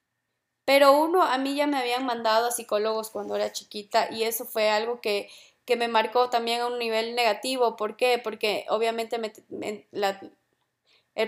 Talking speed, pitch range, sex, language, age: 180 wpm, 220-245 Hz, female, Spanish, 20-39